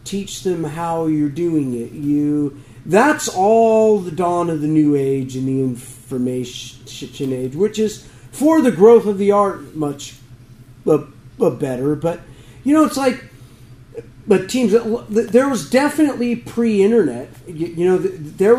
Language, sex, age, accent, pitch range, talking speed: English, male, 40-59, American, 130-210 Hz, 145 wpm